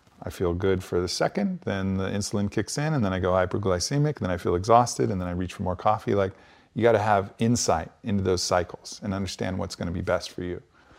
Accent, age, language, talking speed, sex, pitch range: American, 40-59, English, 245 wpm, male, 90-105 Hz